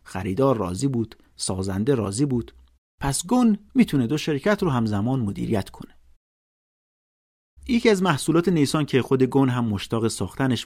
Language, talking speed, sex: Persian, 140 wpm, male